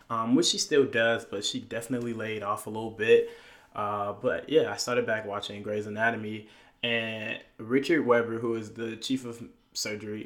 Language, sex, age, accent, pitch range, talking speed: English, male, 20-39, American, 110-130 Hz, 180 wpm